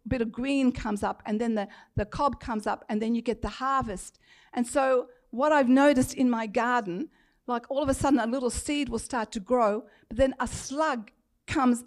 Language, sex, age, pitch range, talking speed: English, female, 50-69, 240-275 Hz, 220 wpm